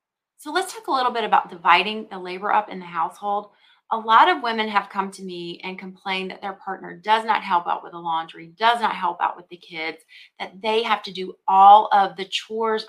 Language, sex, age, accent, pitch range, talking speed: English, female, 30-49, American, 185-235 Hz, 235 wpm